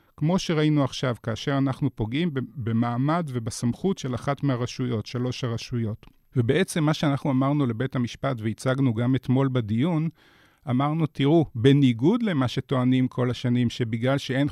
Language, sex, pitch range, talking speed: Hebrew, male, 125-155 Hz, 130 wpm